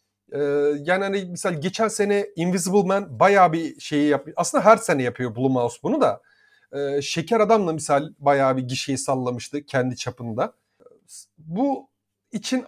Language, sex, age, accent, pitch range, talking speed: Turkish, male, 40-59, native, 165-250 Hz, 140 wpm